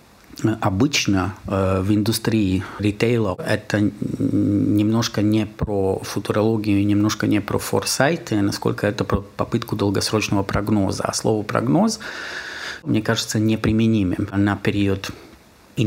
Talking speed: 105 wpm